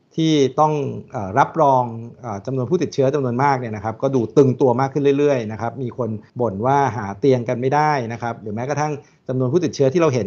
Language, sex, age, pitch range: Thai, male, 60-79, 115-145 Hz